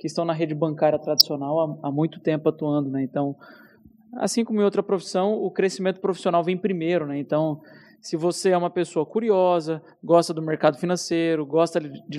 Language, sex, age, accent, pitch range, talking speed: Portuguese, male, 20-39, Brazilian, 165-195 Hz, 175 wpm